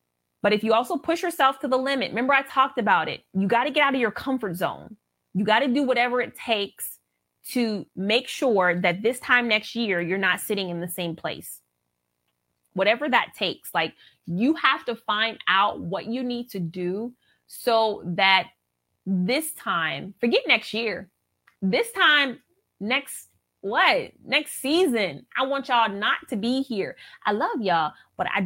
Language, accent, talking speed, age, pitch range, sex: English, American, 175 wpm, 20-39, 190-255 Hz, female